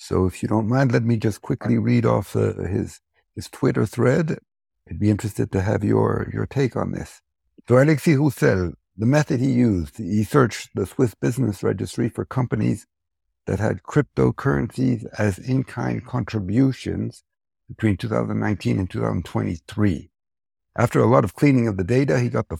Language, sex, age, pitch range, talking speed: English, male, 60-79, 95-130 Hz, 165 wpm